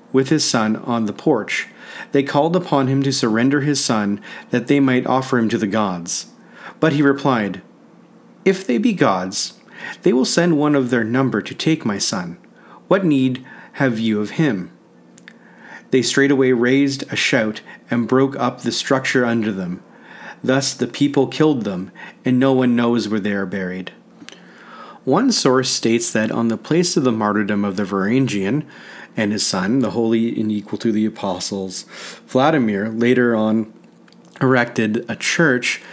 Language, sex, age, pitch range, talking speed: English, male, 40-59, 105-135 Hz, 165 wpm